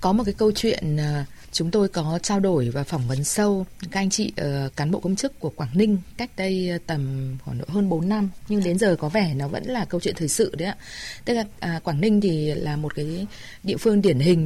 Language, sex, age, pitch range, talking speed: Vietnamese, female, 20-39, 160-220 Hz, 255 wpm